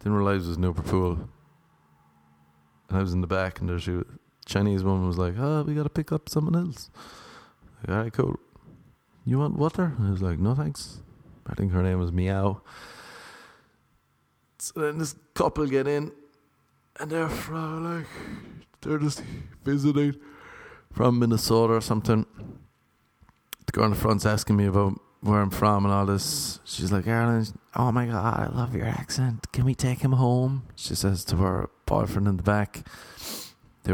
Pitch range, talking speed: 95-125 Hz, 180 wpm